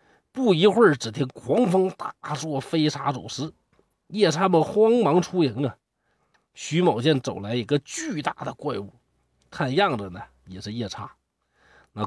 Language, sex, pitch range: Chinese, male, 110-165 Hz